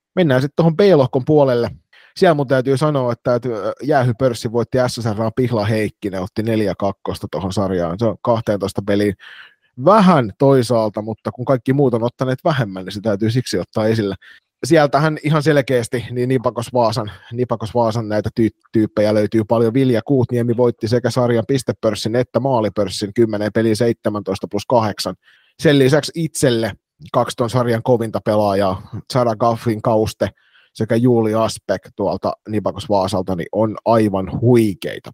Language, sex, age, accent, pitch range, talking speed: Finnish, male, 30-49, native, 105-125 Hz, 145 wpm